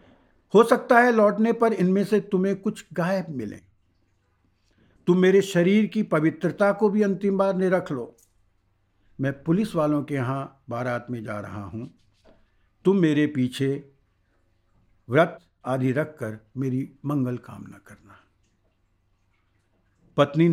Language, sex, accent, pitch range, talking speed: Hindi, male, native, 100-160 Hz, 125 wpm